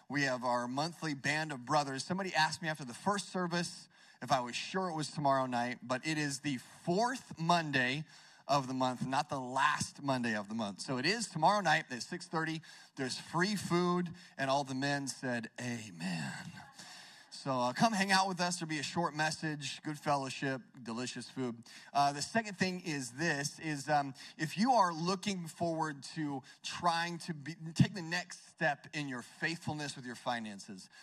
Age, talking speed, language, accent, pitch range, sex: 30-49, 185 wpm, English, American, 140-175 Hz, male